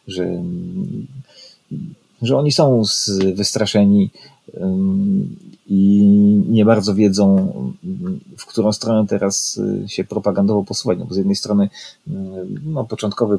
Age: 30-49